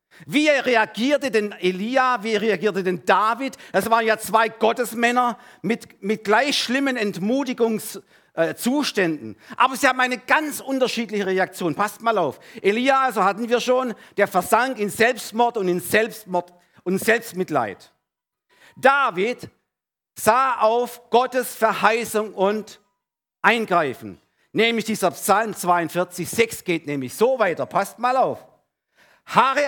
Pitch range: 165-240 Hz